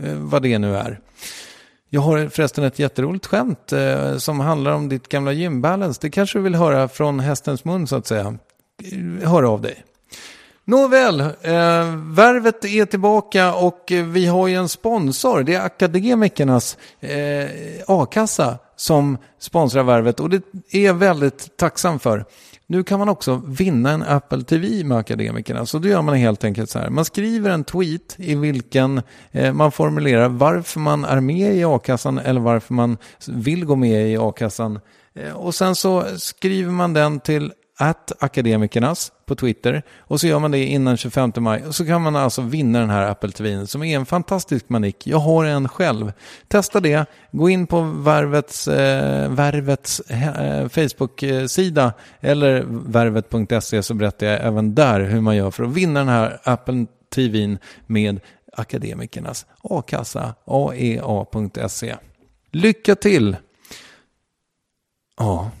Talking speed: 150 wpm